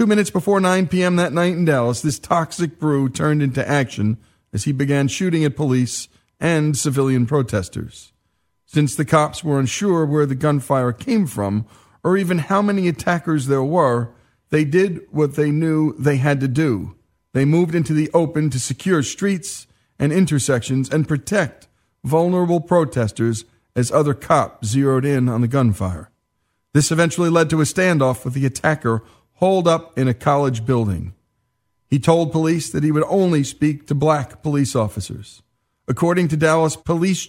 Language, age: English, 40-59